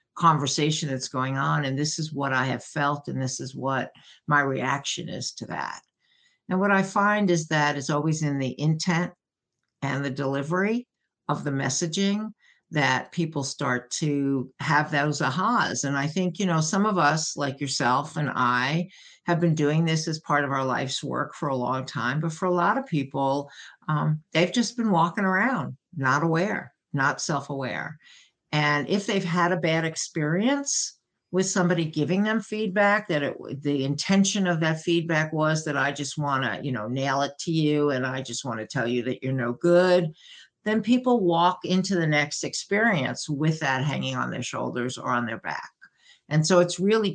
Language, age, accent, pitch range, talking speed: English, 60-79, American, 140-180 Hz, 190 wpm